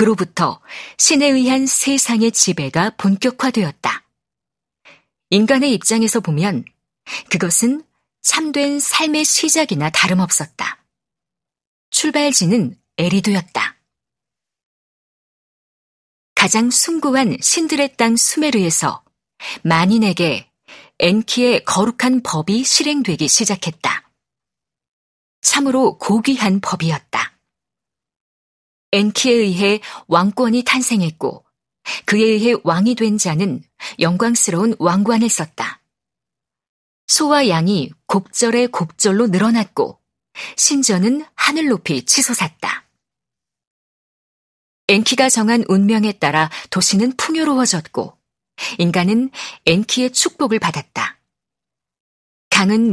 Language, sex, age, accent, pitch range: Korean, female, 40-59, native, 175-250 Hz